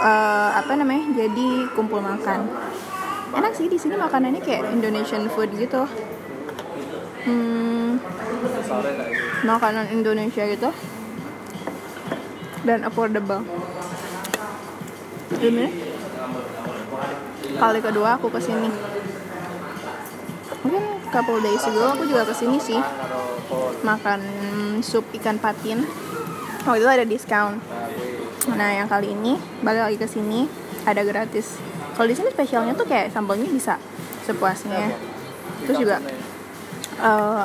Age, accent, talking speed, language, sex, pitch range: 20-39, Indonesian, 105 wpm, English, female, 210-255 Hz